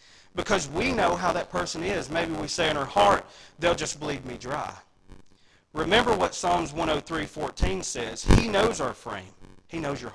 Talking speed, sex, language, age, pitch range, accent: 175 wpm, male, English, 40-59, 100-150 Hz, American